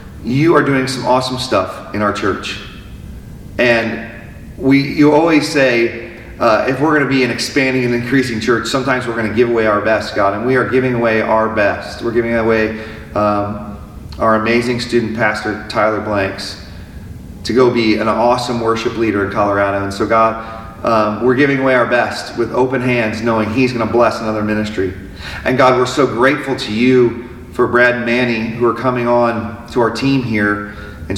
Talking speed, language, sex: 185 wpm, English, male